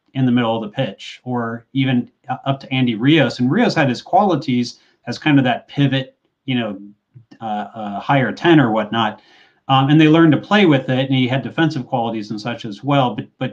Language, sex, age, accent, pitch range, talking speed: English, male, 30-49, American, 125-155 Hz, 215 wpm